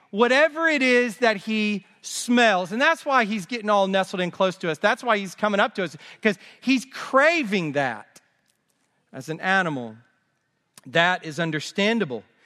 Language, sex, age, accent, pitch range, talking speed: English, male, 40-59, American, 170-215 Hz, 165 wpm